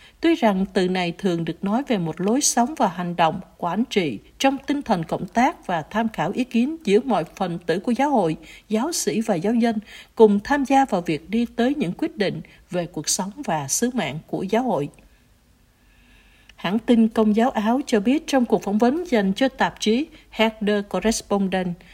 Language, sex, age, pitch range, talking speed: Vietnamese, female, 60-79, 190-240 Hz, 200 wpm